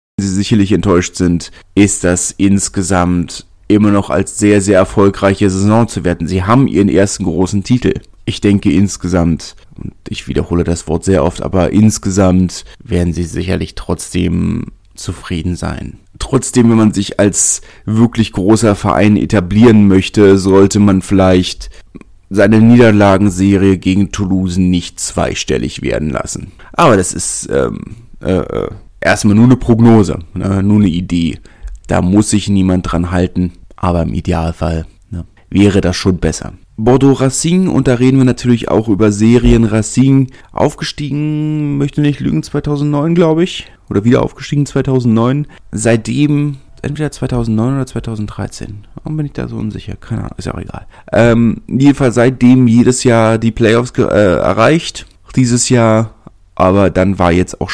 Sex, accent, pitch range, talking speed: male, German, 90-120 Hz, 150 wpm